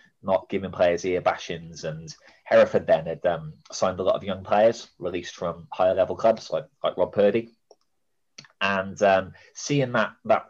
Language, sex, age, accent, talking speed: English, male, 30-49, British, 170 wpm